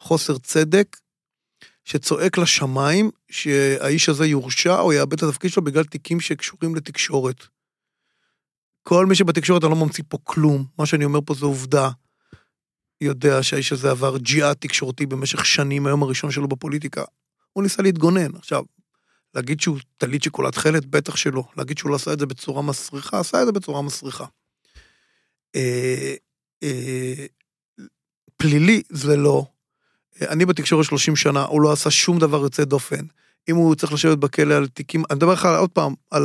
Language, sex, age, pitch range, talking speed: Hebrew, male, 30-49, 145-175 Hz, 160 wpm